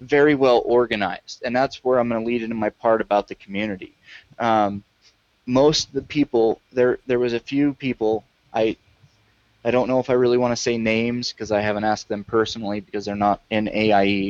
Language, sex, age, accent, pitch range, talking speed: English, male, 20-39, American, 105-125 Hz, 205 wpm